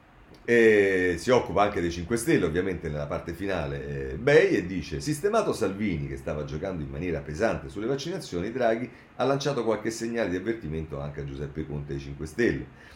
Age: 40-59